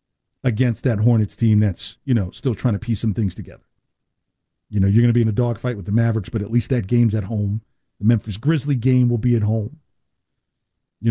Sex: male